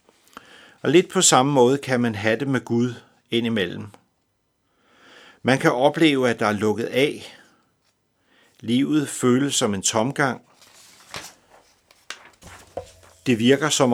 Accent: native